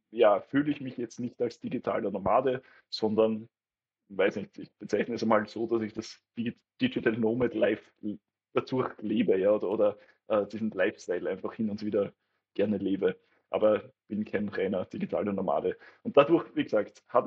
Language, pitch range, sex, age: German, 110-130 Hz, male, 20-39